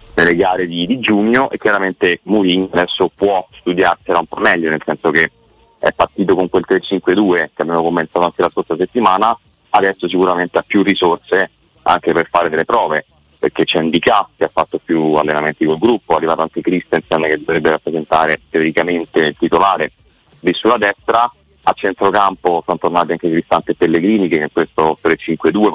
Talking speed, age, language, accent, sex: 175 wpm, 30-49, Italian, native, male